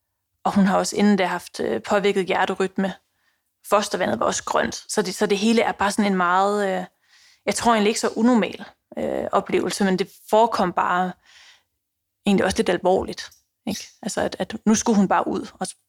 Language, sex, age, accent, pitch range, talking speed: Danish, female, 30-49, native, 190-220 Hz, 185 wpm